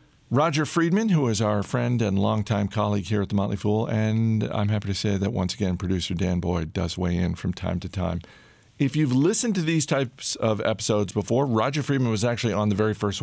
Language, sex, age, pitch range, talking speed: English, male, 50-69, 100-120 Hz, 220 wpm